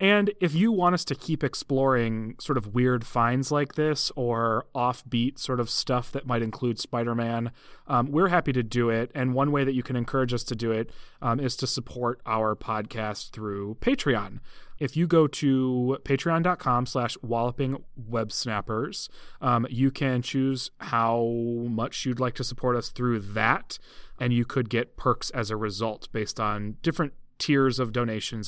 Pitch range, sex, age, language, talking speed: 115-140 Hz, male, 30-49, English, 170 wpm